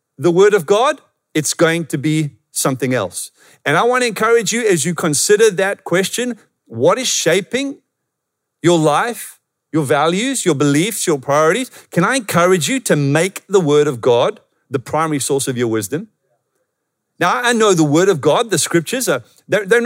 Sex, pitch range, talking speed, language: male, 145-195 Hz, 170 wpm, English